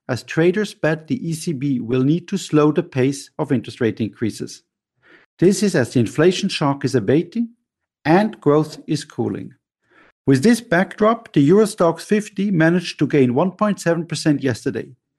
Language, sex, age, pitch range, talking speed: English, male, 50-69, 135-190 Hz, 150 wpm